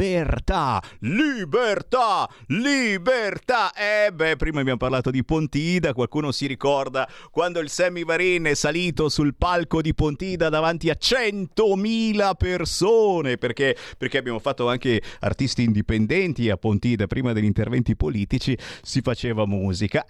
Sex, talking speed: male, 130 wpm